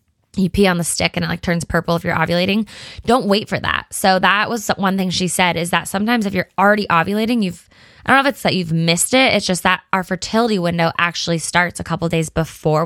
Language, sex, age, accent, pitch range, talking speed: English, female, 20-39, American, 170-205 Hz, 250 wpm